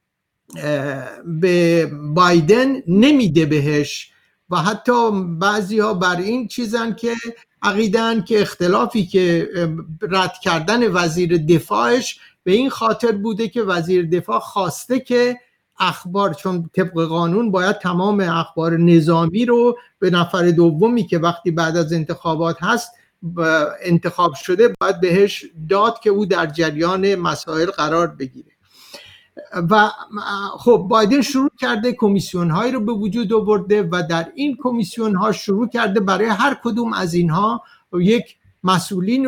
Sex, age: male, 60-79